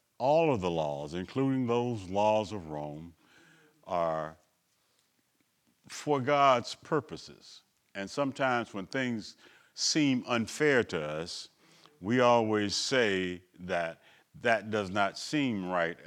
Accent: American